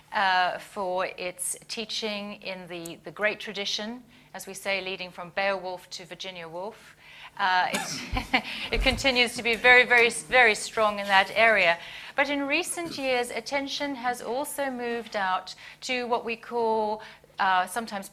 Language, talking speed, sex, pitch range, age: English, 150 wpm, female, 185-235 Hz, 30-49